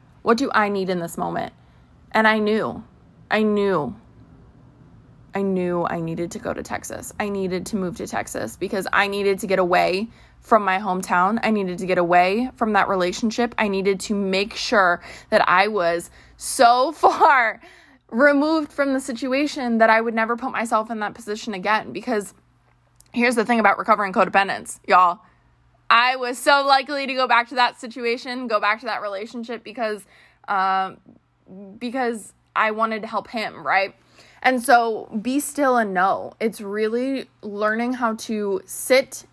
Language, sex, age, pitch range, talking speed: English, female, 20-39, 190-235 Hz, 170 wpm